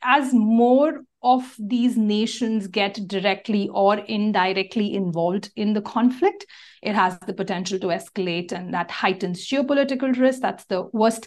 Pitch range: 190-225 Hz